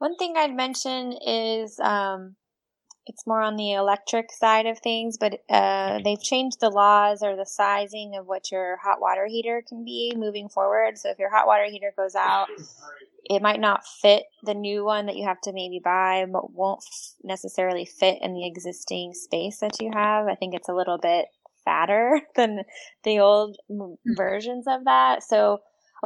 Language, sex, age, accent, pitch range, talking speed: English, female, 20-39, American, 185-220 Hz, 185 wpm